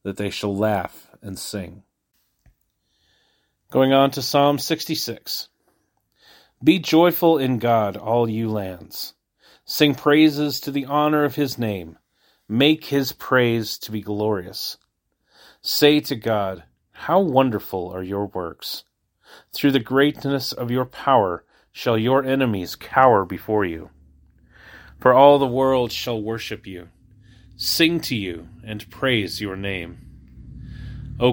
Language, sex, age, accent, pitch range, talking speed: English, male, 40-59, American, 100-135 Hz, 130 wpm